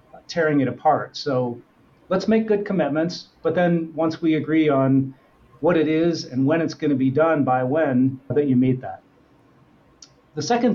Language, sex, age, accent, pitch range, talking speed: English, male, 40-59, American, 135-165 Hz, 180 wpm